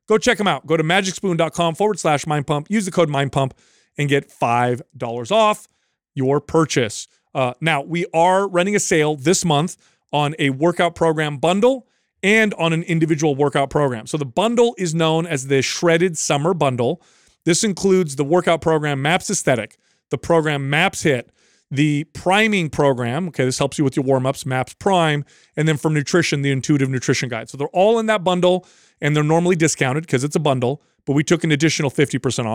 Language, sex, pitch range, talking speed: English, male, 145-185 Hz, 190 wpm